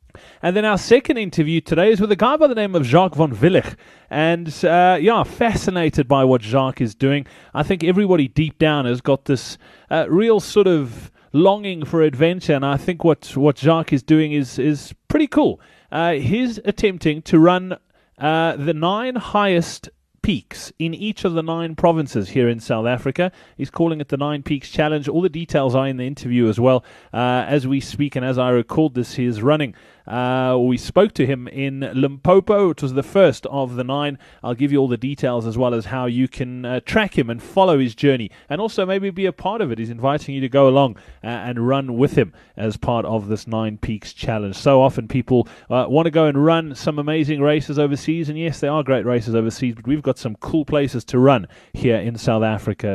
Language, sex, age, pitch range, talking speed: English, male, 30-49, 125-175 Hz, 220 wpm